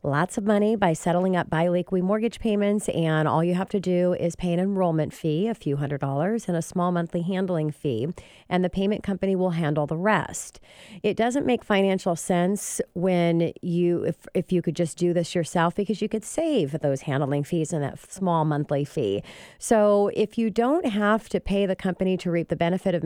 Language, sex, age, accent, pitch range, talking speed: English, female, 40-59, American, 165-205 Hz, 205 wpm